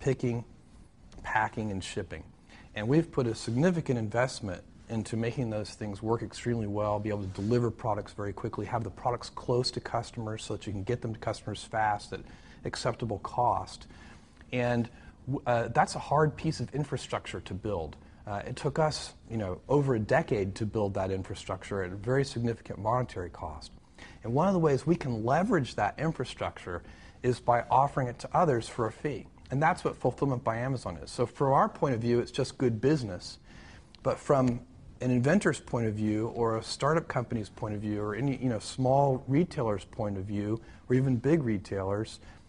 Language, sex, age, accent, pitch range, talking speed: English, male, 40-59, American, 105-130 Hz, 190 wpm